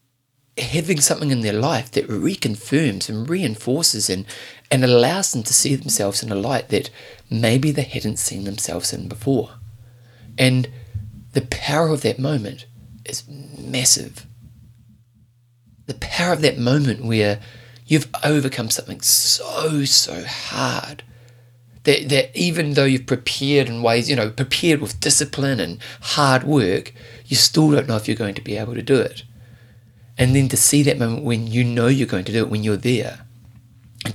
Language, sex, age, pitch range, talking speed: English, male, 30-49, 115-135 Hz, 165 wpm